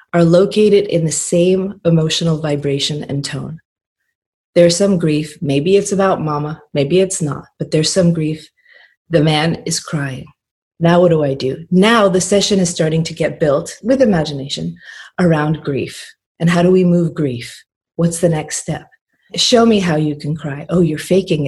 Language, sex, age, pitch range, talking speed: English, female, 30-49, 155-190 Hz, 175 wpm